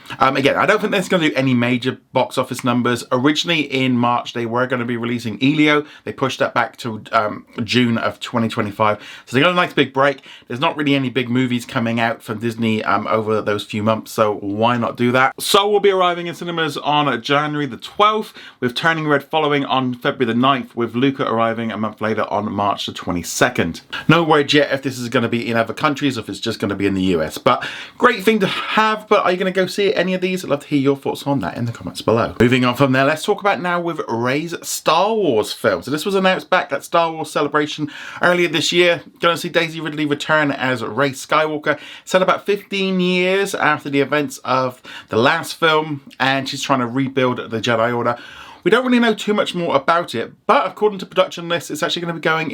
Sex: male